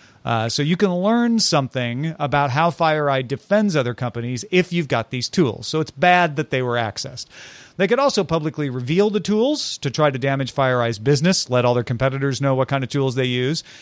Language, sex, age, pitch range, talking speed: English, male, 40-59, 130-170 Hz, 210 wpm